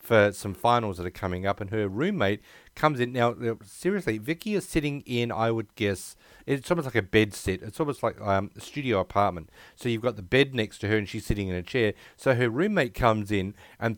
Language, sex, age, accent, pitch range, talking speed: English, male, 40-59, Australian, 100-120 Hz, 230 wpm